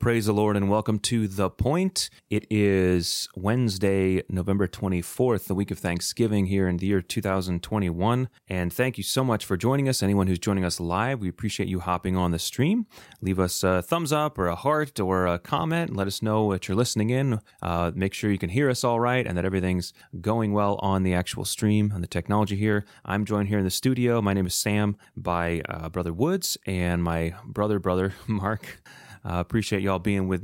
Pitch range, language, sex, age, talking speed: 90-115 Hz, English, male, 30-49, 210 wpm